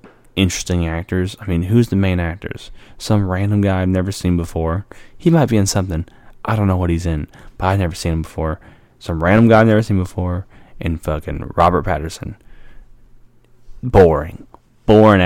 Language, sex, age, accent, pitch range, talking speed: English, male, 10-29, American, 90-120 Hz, 175 wpm